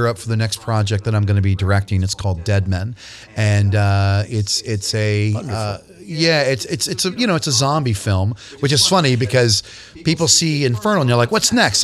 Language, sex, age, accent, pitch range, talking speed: English, male, 30-49, American, 100-125 Hz, 225 wpm